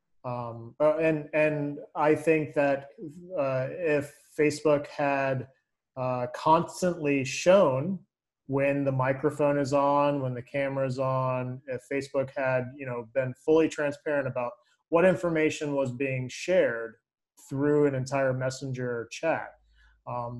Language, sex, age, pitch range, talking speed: English, male, 20-39, 120-145 Hz, 125 wpm